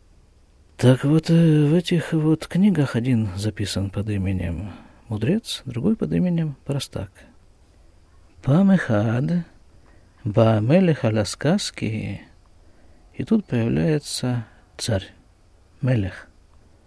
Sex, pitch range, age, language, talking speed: male, 95-145 Hz, 50-69, Russian, 85 wpm